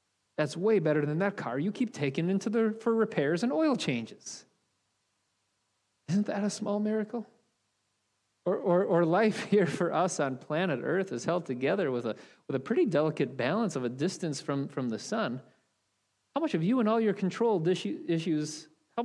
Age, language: 30-49, English